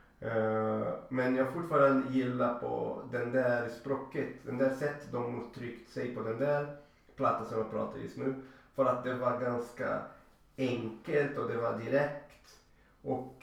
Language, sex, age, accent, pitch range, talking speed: Swedish, male, 30-49, native, 115-135 Hz, 155 wpm